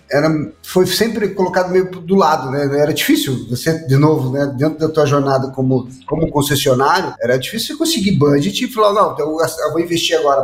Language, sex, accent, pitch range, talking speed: Portuguese, male, Brazilian, 140-195 Hz, 190 wpm